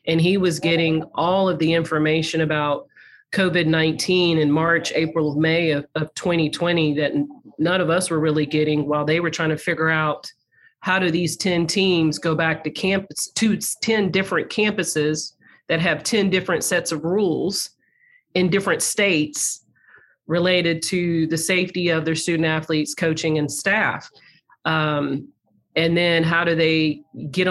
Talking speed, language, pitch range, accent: 155 wpm, English, 155-180 Hz, American